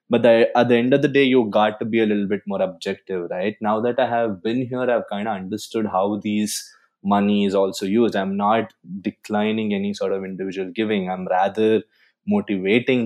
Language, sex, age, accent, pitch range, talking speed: English, male, 20-39, Indian, 100-120 Hz, 205 wpm